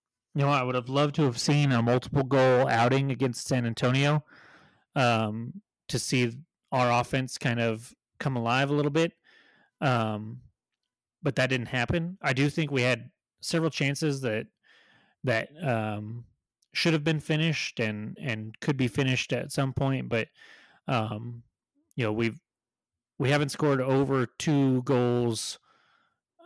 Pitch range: 120-145 Hz